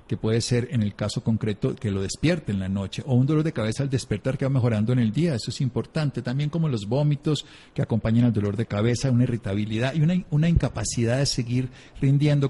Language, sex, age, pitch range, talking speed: Spanish, male, 50-69, 105-135 Hz, 230 wpm